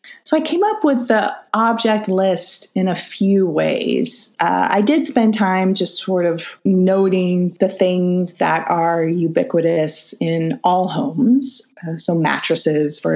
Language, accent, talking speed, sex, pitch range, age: English, American, 150 wpm, female, 165-210 Hz, 30-49